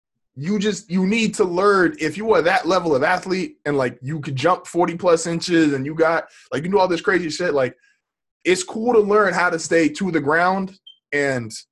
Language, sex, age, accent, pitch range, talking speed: English, male, 20-39, American, 125-180 Hz, 220 wpm